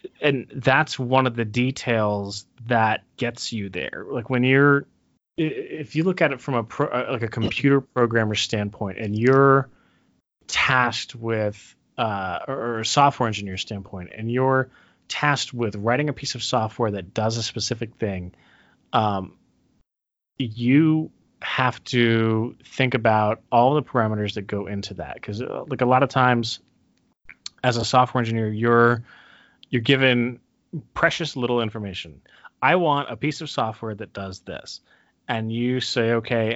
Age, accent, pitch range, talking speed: 30-49, American, 105-130 Hz, 155 wpm